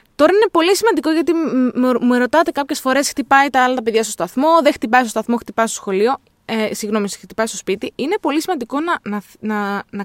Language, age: Greek, 20-39